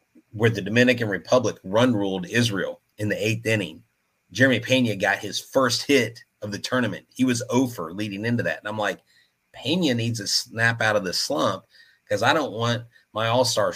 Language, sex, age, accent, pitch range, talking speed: English, male, 30-49, American, 90-120 Hz, 190 wpm